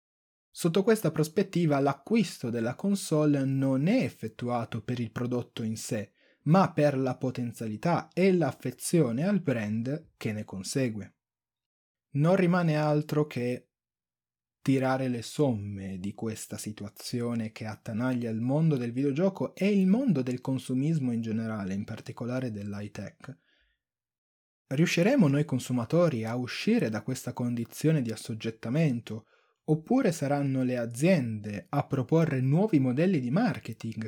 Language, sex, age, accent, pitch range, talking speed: Italian, male, 20-39, native, 115-155 Hz, 125 wpm